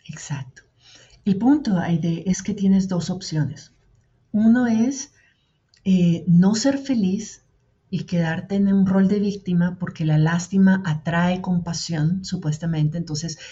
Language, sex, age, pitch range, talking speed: Spanish, female, 40-59, 155-190 Hz, 130 wpm